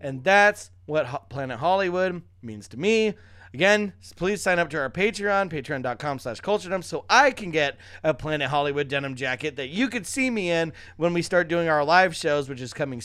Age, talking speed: 30-49, 200 wpm